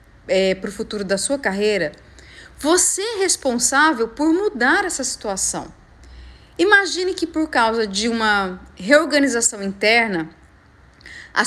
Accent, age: Brazilian, 40-59